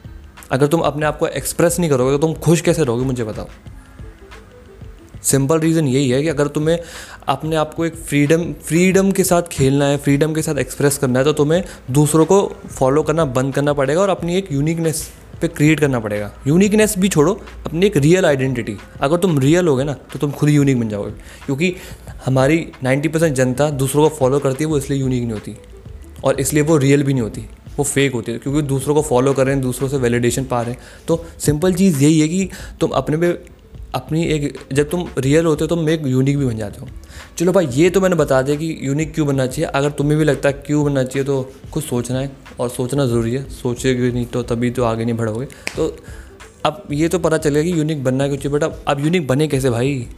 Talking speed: 220 wpm